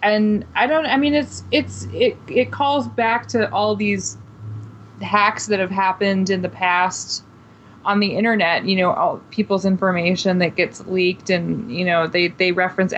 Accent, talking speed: American, 175 wpm